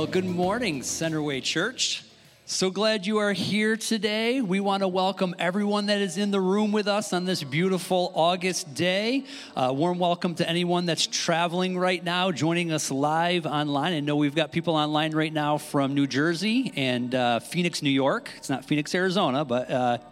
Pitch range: 150-190 Hz